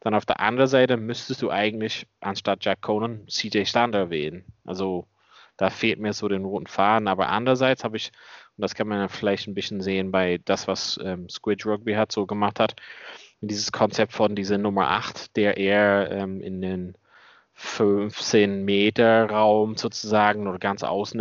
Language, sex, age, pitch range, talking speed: German, male, 20-39, 100-115 Hz, 180 wpm